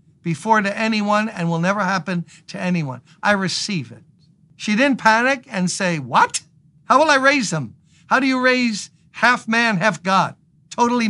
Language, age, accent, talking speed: English, 60-79, American, 175 wpm